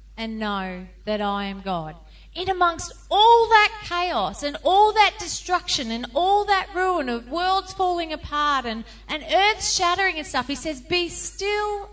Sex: female